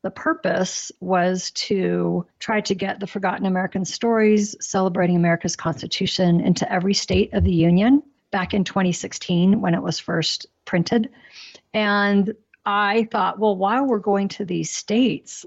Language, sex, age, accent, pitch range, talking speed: English, female, 50-69, American, 180-220 Hz, 145 wpm